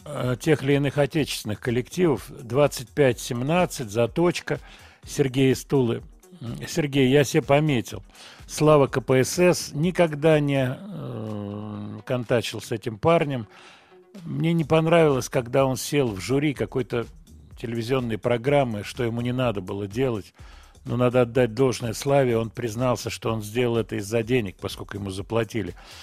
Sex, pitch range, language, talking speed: male, 110-140 Hz, Russian, 125 wpm